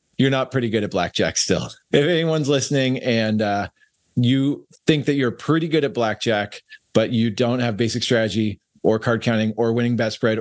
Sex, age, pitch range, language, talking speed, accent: male, 40-59, 105-130 Hz, English, 190 wpm, American